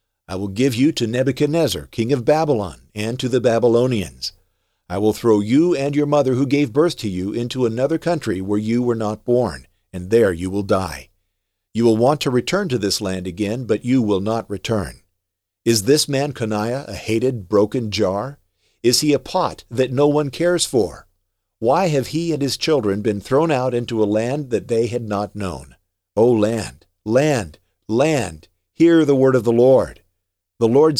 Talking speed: 190 wpm